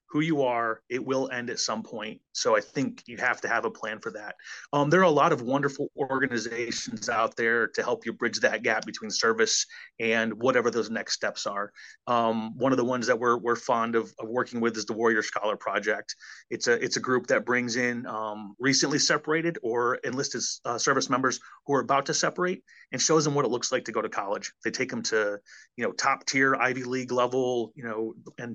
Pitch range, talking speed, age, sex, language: 115-140 Hz, 225 wpm, 30-49, male, English